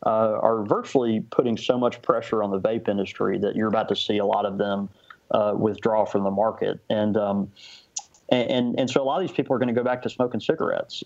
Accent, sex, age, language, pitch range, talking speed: American, male, 30-49, English, 105-125 Hz, 235 wpm